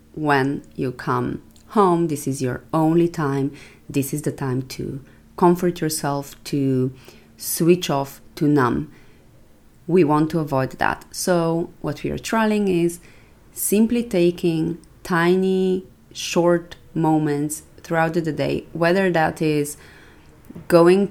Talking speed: 125 wpm